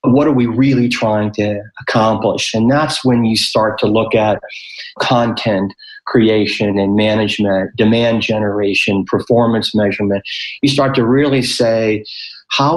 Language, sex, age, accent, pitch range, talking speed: English, male, 40-59, American, 105-125 Hz, 135 wpm